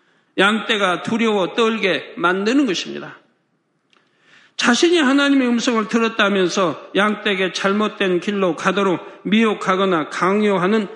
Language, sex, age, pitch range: Korean, male, 50-69, 200-260 Hz